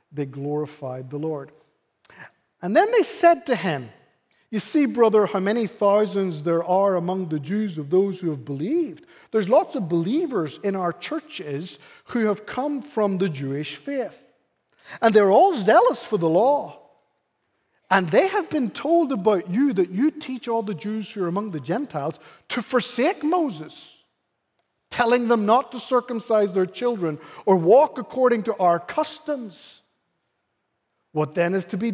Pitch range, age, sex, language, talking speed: 175-250 Hz, 50-69, male, English, 160 wpm